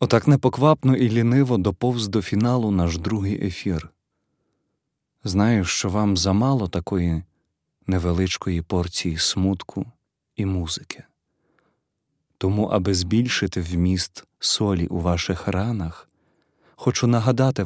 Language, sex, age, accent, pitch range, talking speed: Ukrainian, male, 30-49, native, 95-115 Hz, 100 wpm